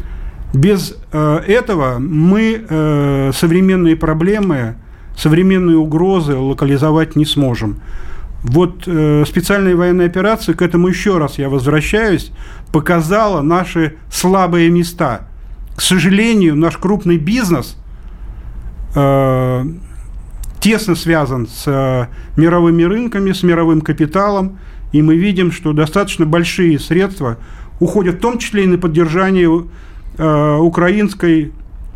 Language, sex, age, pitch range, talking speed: Russian, male, 40-59, 145-180 Hz, 100 wpm